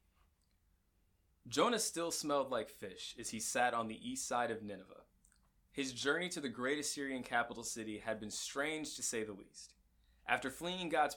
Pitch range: 100-135 Hz